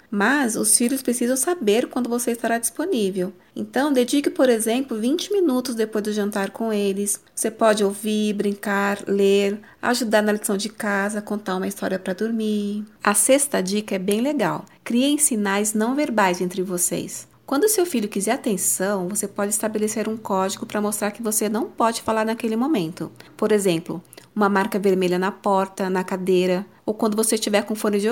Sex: female